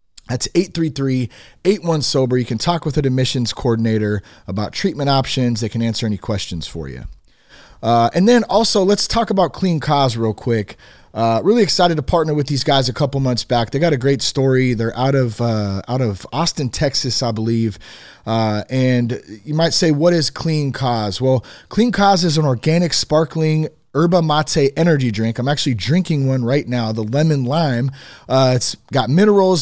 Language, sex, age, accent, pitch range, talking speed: English, male, 30-49, American, 115-155 Hz, 180 wpm